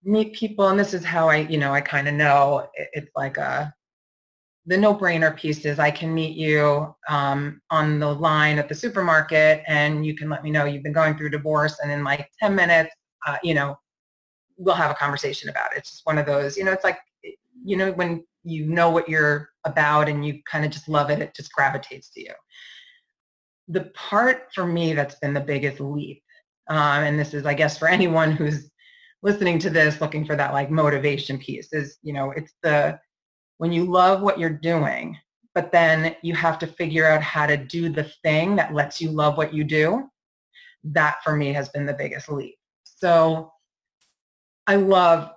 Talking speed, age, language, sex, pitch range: 200 wpm, 30-49, English, female, 145-170 Hz